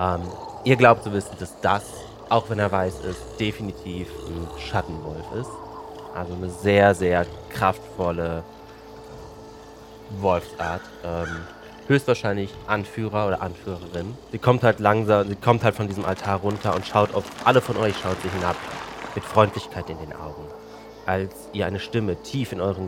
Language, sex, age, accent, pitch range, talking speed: German, male, 30-49, German, 90-110 Hz, 155 wpm